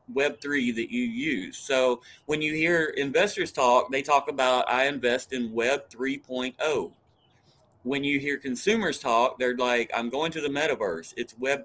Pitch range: 120-150 Hz